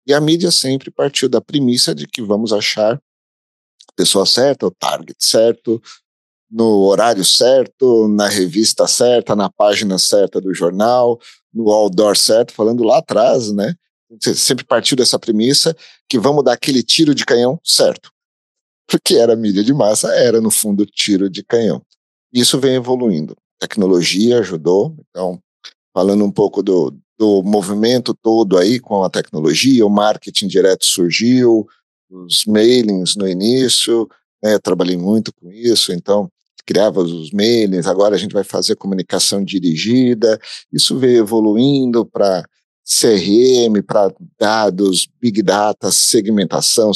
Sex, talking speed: male, 140 wpm